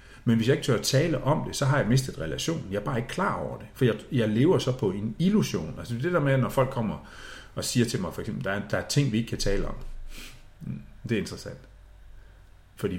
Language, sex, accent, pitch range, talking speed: Danish, male, native, 95-135 Hz, 260 wpm